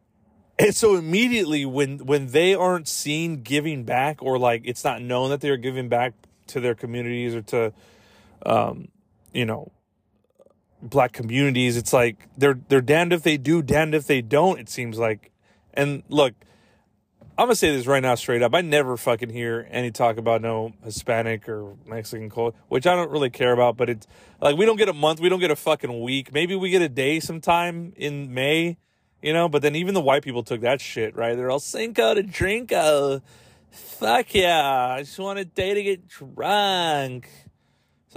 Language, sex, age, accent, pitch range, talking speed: English, male, 30-49, American, 120-180 Hz, 190 wpm